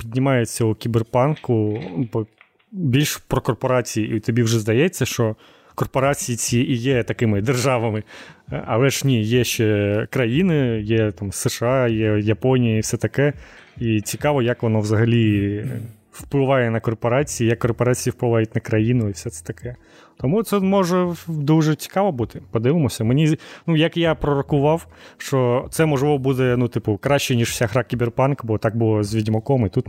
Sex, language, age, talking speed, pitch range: male, Ukrainian, 30-49, 155 wpm, 110-135 Hz